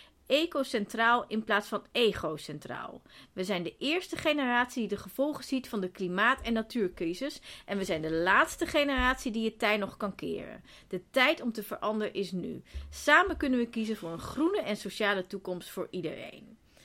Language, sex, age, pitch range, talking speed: Dutch, female, 40-59, 195-265 Hz, 180 wpm